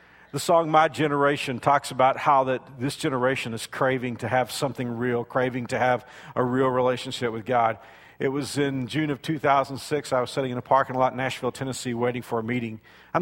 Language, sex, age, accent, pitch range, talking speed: English, male, 50-69, American, 125-145 Hz, 205 wpm